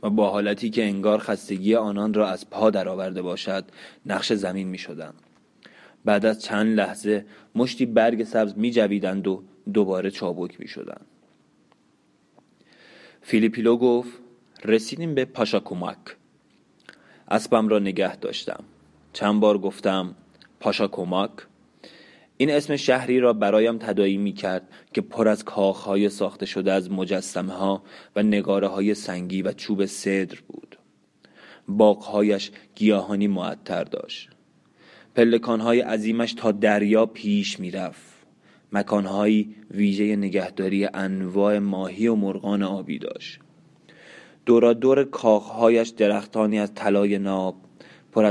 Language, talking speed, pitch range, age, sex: Persian, 120 wpm, 95-110 Hz, 30-49, male